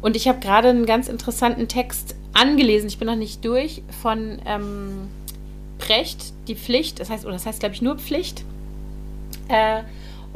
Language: German